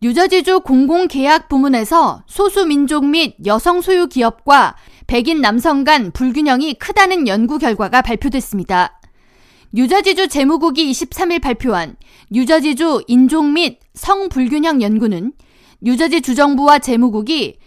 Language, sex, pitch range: Korean, female, 245-335 Hz